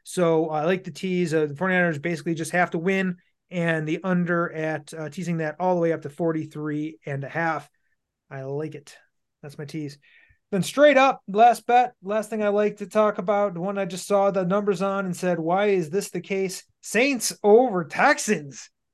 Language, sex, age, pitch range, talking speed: English, male, 30-49, 160-200 Hz, 210 wpm